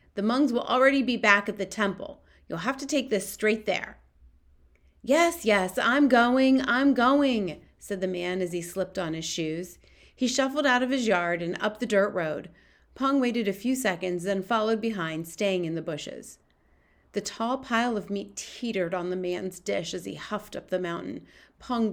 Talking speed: 195 wpm